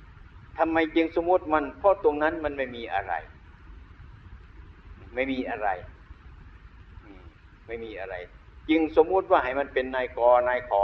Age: 60-79